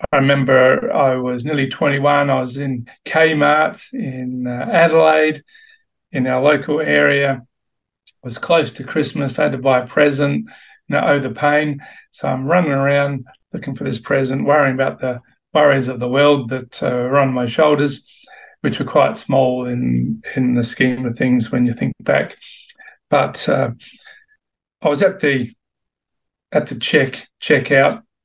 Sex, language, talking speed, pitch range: male, English, 160 wpm, 125-150 Hz